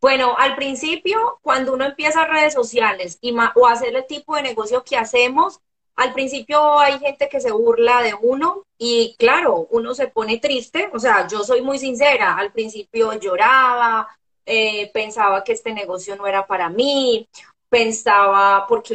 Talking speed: 170 wpm